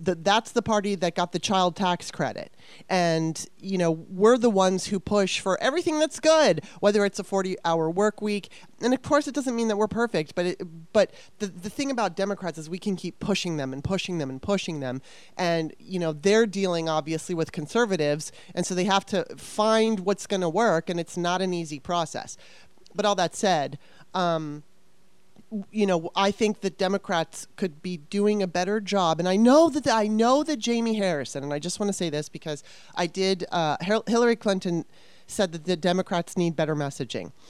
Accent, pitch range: American, 165-210 Hz